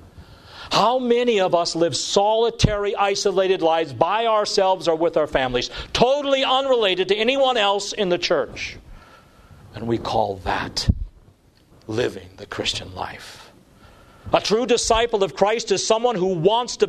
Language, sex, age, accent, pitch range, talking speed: English, male, 50-69, American, 175-245 Hz, 140 wpm